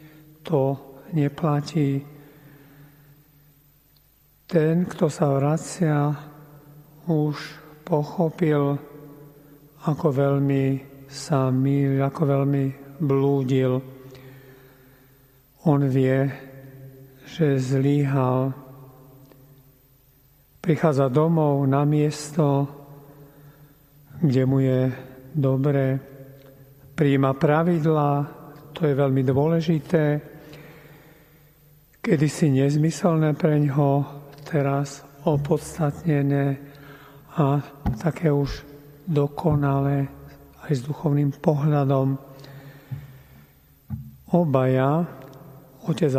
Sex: male